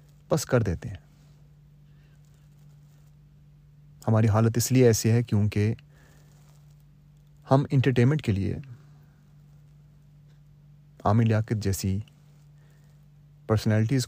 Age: 30-49